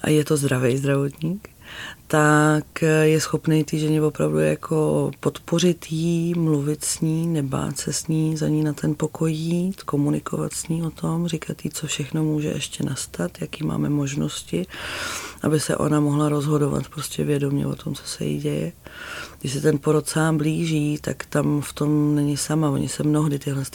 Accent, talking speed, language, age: native, 175 wpm, Czech, 30-49